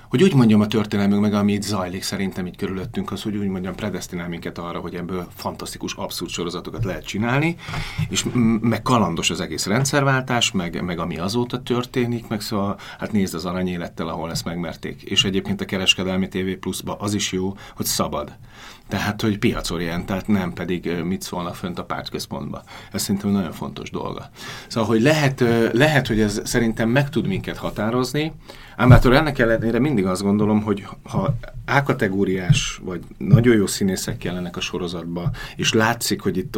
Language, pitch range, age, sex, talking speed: Hungarian, 95-125 Hz, 40-59, male, 175 wpm